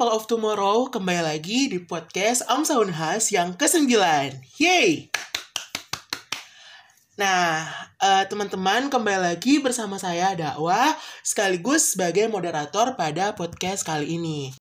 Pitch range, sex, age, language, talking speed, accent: 175-240 Hz, male, 20-39, Indonesian, 105 wpm, native